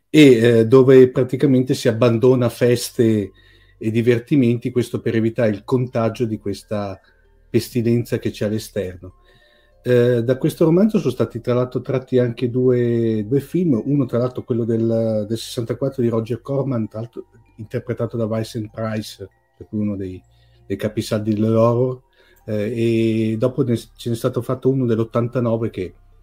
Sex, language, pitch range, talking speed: male, Italian, 105-125 Hz, 155 wpm